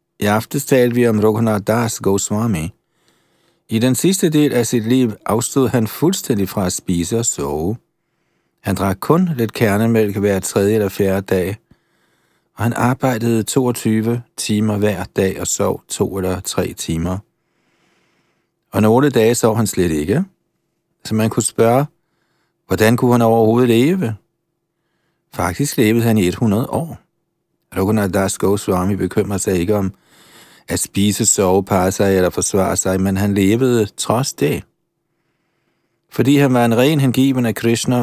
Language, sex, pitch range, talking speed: Danish, male, 100-130 Hz, 150 wpm